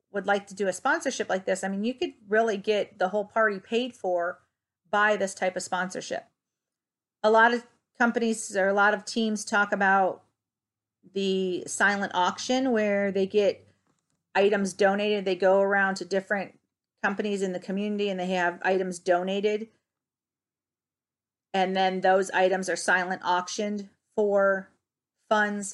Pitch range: 185-220 Hz